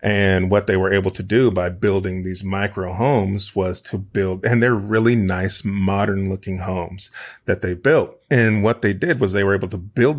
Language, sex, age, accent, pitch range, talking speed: English, male, 30-49, American, 95-110 Hz, 205 wpm